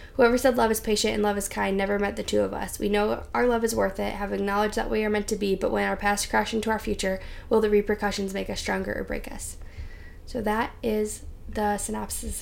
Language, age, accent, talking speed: English, 10-29, American, 250 wpm